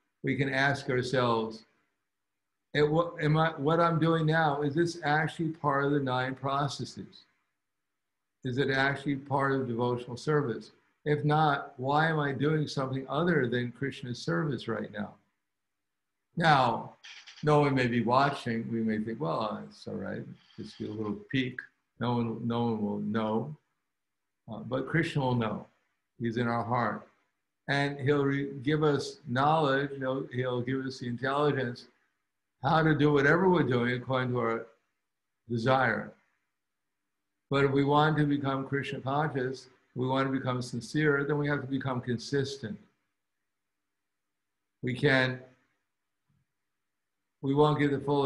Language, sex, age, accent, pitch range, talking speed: English, male, 60-79, American, 115-145 Hz, 145 wpm